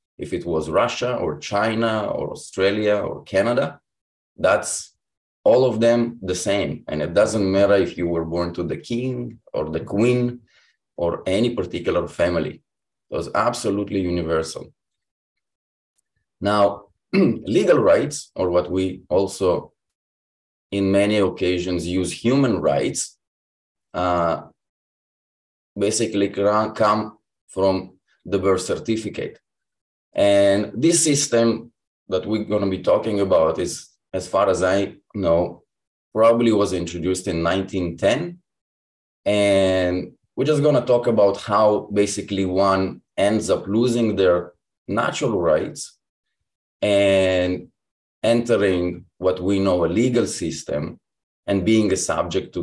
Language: English